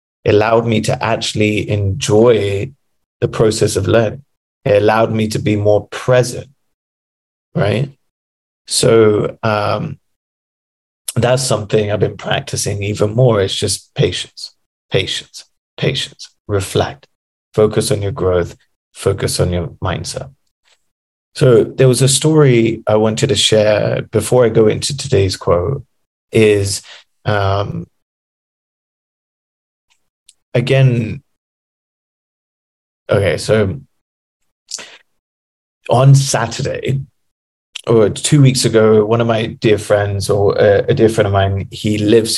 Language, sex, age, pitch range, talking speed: English, male, 30-49, 100-120 Hz, 115 wpm